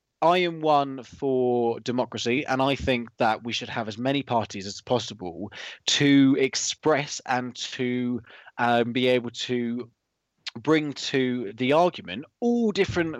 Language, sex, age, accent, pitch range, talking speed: English, male, 20-39, British, 115-140 Hz, 140 wpm